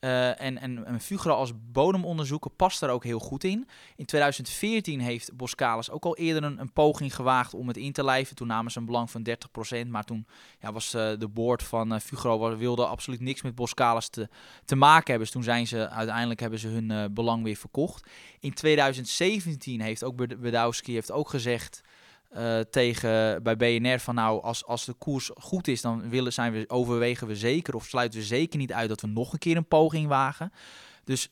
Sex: male